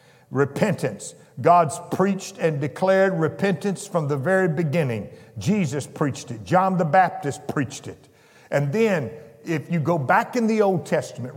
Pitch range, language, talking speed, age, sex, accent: 130-165 Hz, English, 150 wpm, 50-69, male, American